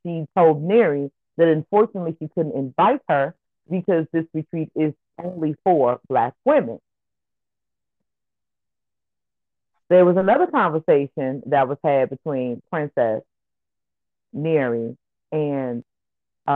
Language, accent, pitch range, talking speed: English, American, 145-180 Hz, 100 wpm